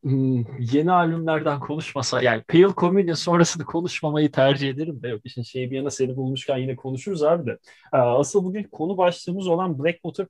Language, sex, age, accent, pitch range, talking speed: Turkish, male, 30-49, native, 135-170 Hz, 145 wpm